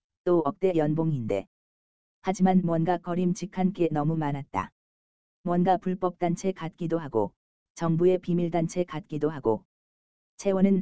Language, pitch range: Korean, 120-180 Hz